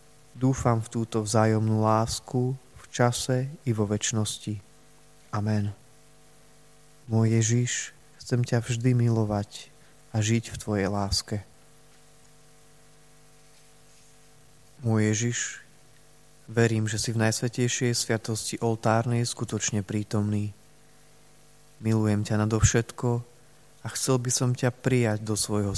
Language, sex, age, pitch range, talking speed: Slovak, male, 20-39, 110-150 Hz, 100 wpm